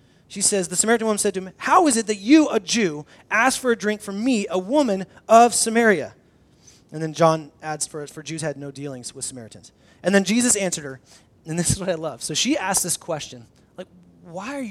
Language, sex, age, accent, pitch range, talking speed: English, male, 30-49, American, 155-230 Hz, 230 wpm